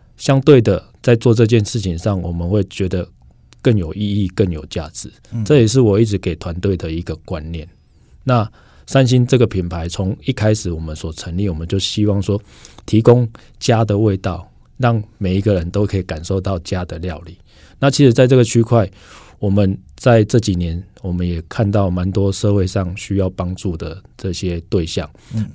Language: Chinese